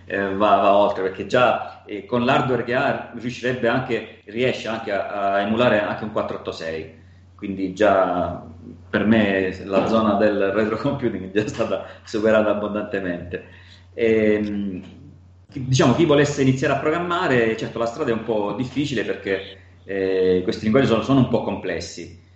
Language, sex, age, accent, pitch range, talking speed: Italian, male, 30-49, native, 90-110 Hz, 150 wpm